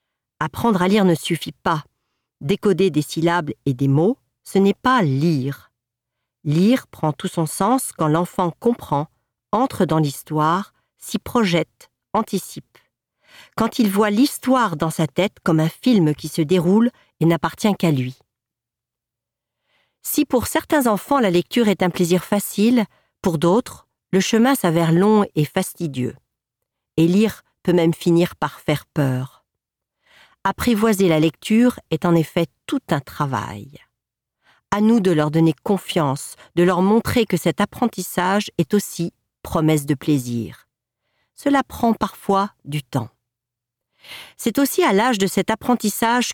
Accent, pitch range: French, 155-210 Hz